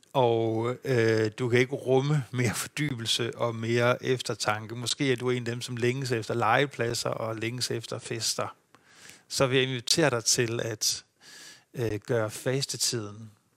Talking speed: 155 wpm